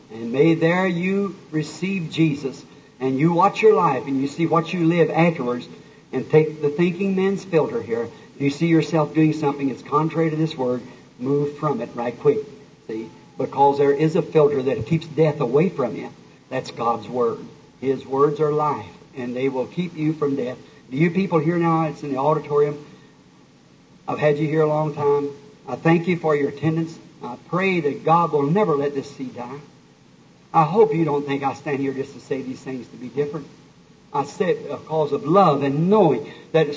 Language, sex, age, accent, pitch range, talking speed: English, male, 50-69, American, 145-180 Hz, 200 wpm